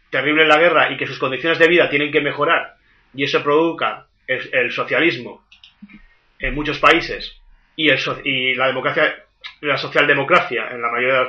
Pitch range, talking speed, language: 130-175 Hz, 180 wpm, Spanish